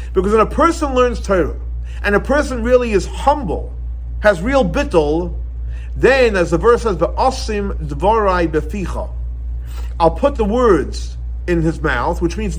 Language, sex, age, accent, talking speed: English, male, 50-69, American, 140 wpm